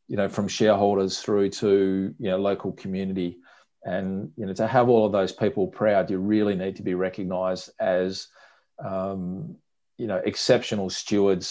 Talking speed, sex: 165 wpm, male